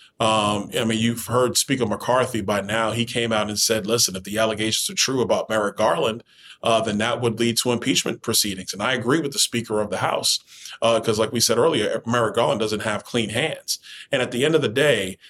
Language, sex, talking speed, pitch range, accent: English, male, 230 wpm, 110-140 Hz, American